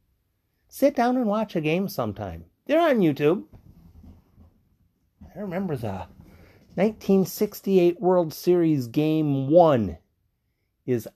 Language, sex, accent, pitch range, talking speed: English, male, American, 95-150 Hz, 100 wpm